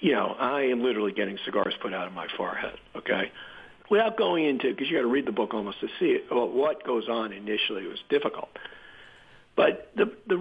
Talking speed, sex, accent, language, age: 210 wpm, male, American, English, 50-69